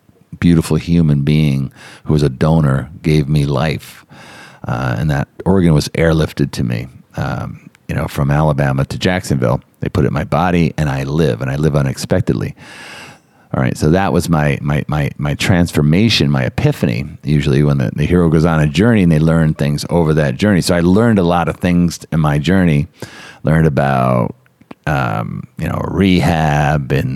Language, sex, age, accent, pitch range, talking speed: English, male, 40-59, American, 70-85 Hz, 180 wpm